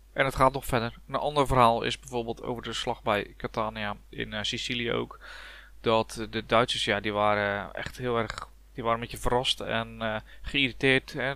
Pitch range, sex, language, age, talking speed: 110-125 Hz, male, Dutch, 20-39, 190 wpm